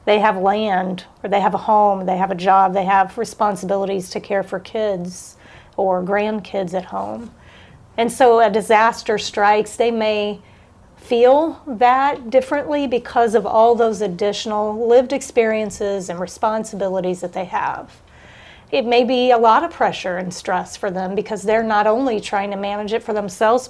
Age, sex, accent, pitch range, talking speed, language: 40-59, female, American, 200-250 Hz, 165 wpm, English